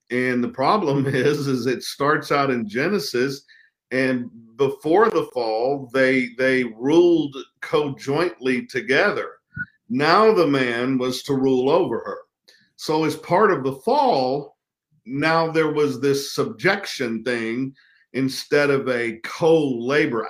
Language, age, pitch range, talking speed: English, 50-69, 110-135 Hz, 125 wpm